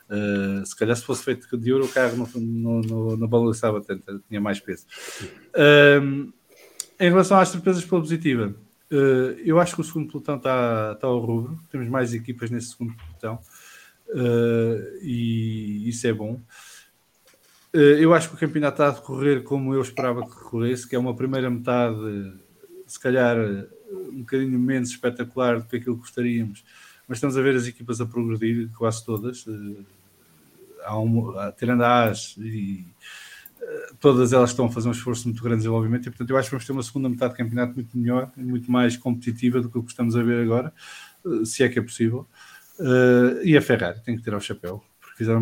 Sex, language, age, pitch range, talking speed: male, English, 20-39, 115-130 Hz, 185 wpm